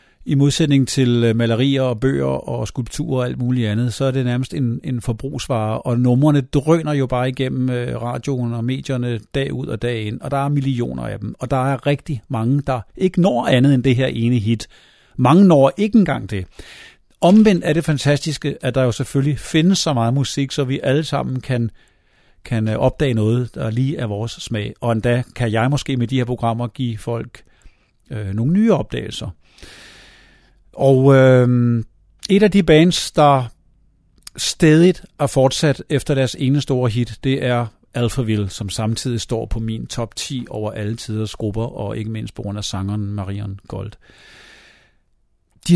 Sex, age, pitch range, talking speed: male, 50-69, 115-140 Hz, 180 wpm